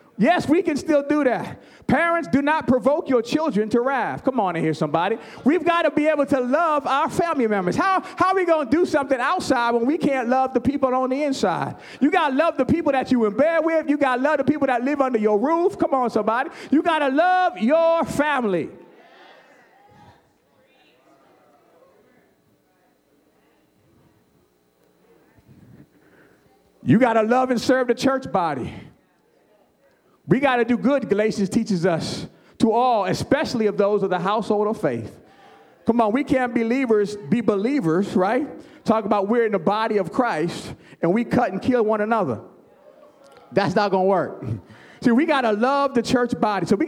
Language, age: English, 40-59